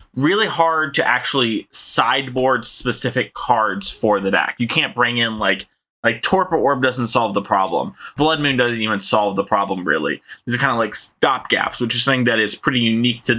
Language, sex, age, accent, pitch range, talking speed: English, male, 20-39, American, 115-140 Hz, 200 wpm